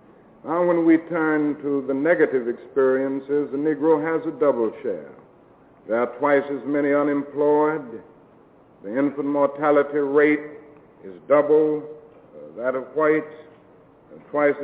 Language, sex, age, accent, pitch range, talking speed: English, male, 60-79, American, 130-150 Hz, 125 wpm